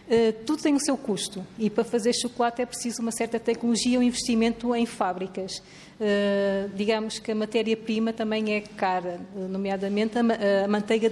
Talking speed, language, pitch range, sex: 150 wpm, Portuguese, 210-250 Hz, female